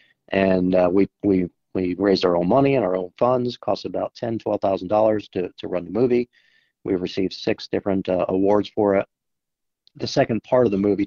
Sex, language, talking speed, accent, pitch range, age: male, English, 190 wpm, American, 95-105 Hz, 40-59